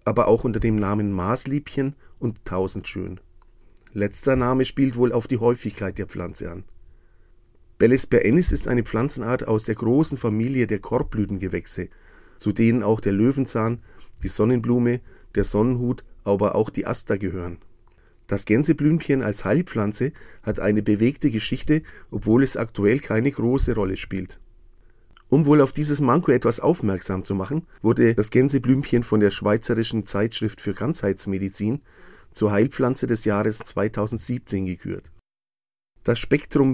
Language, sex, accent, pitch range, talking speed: German, male, German, 100-130 Hz, 135 wpm